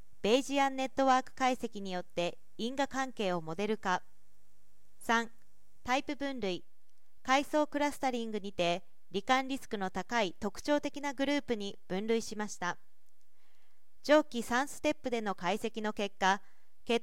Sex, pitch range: female, 200-260 Hz